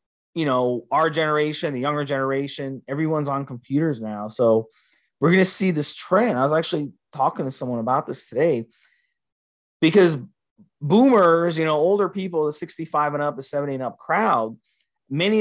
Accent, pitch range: American, 125-170 Hz